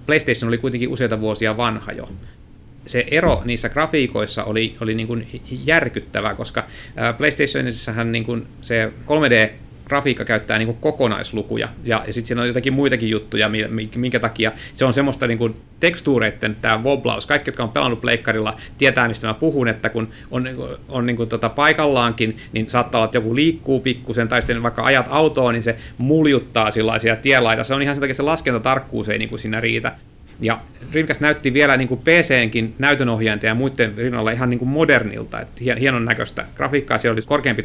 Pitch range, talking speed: 110-135 Hz, 170 wpm